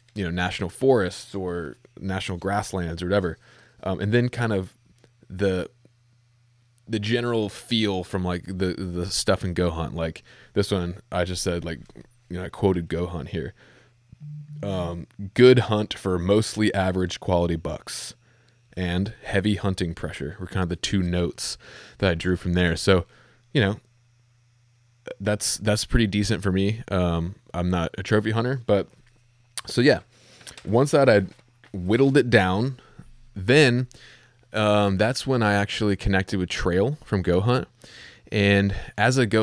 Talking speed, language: 155 wpm, English